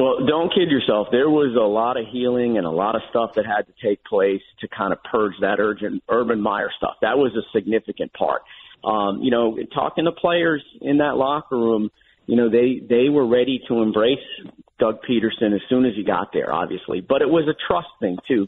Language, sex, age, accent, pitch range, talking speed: English, male, 50-69, American, 110-140 Hz, 220 wpm